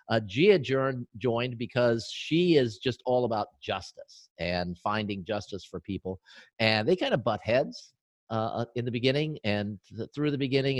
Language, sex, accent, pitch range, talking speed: English, male, American, 100-130 Hz, 165 wpm